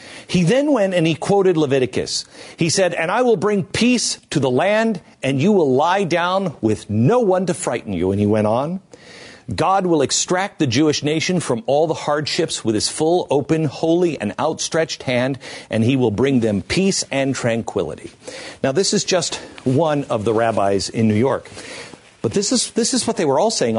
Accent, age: American, 50-69